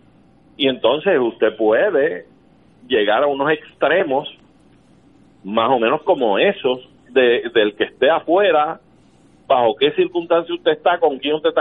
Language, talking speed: Spanish, 135 wpm